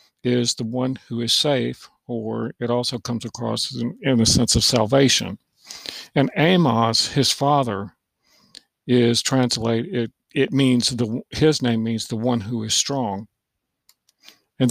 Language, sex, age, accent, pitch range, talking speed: English, male, 50-69, American, 115-140 Hz, 150 wpm